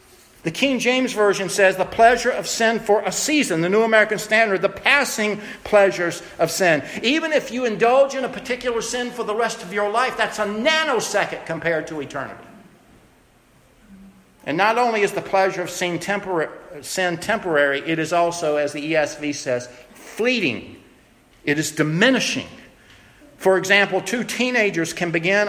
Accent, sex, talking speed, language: American, male, 160 wpm, English